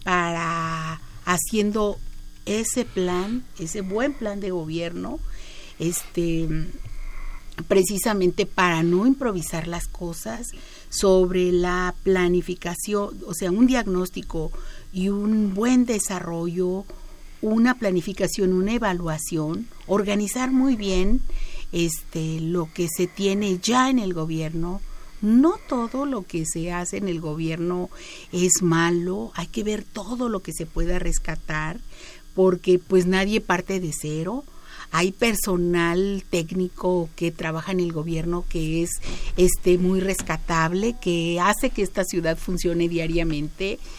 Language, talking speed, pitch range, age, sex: Spanish, 120 wpm, 170-200 Hz, 50-69, female